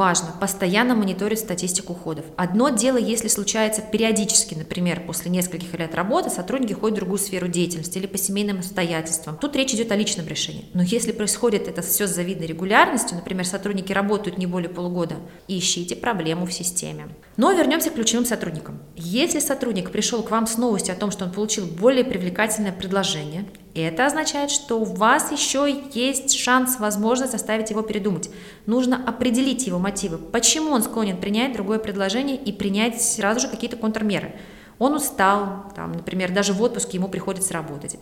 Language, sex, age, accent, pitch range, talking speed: Russian, female, 20-39, native, 180-230 Hz, 165 wpm